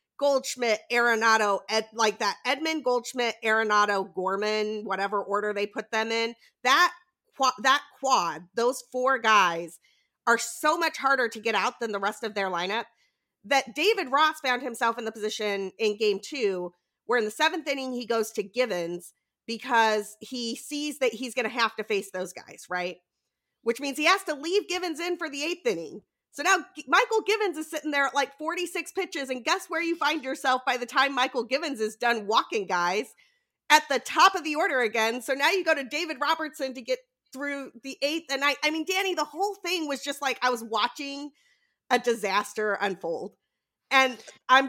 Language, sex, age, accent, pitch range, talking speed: English, female, 40-59, American, 220-300 Hz, 190 wpm